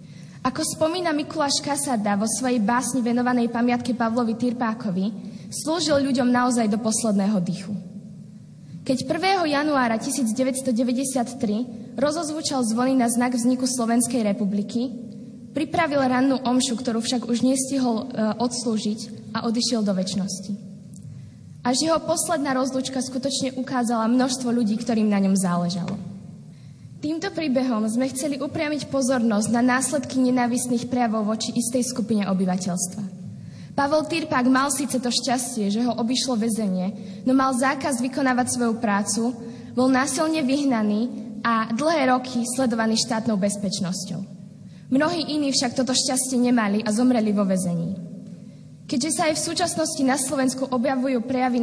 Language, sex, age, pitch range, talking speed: Slovak, female, 10-29, 210-265 Hz, 130 wpm